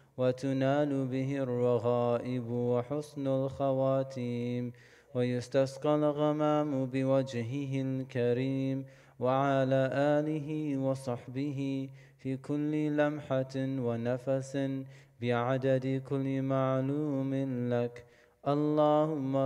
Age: 30-49